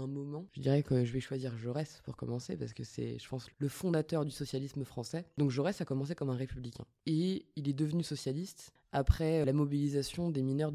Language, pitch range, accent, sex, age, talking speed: French, 130-165 Hz, French, female, 20-39, 210 wpm